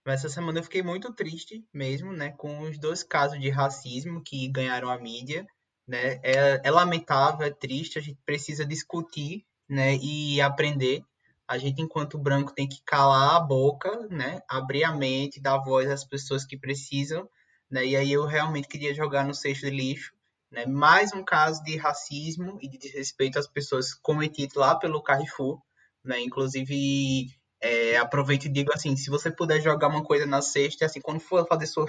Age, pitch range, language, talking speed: 20-39, 135-155 Hz, Portuguese, 185 wpm